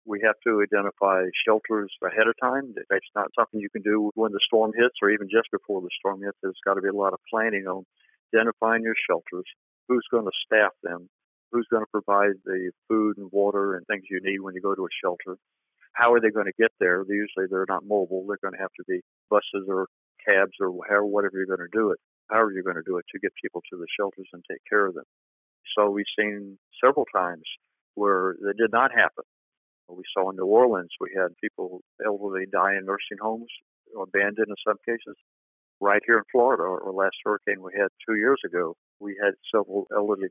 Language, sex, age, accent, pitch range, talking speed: English, male, 50-69, American, 95-110 Hz, 220 wpm